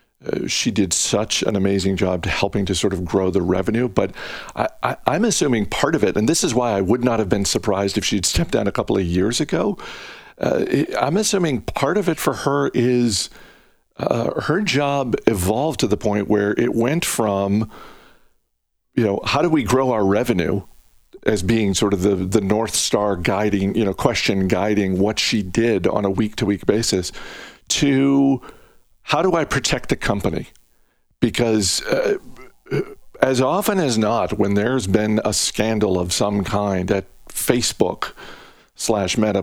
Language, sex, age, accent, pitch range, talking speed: English, male, 50-69, American, 100-125 Hz, 175 wpm